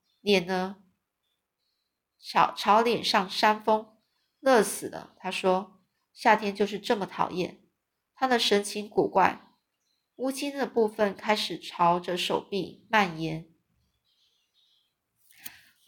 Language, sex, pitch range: Chinese, female, 185-225 Hz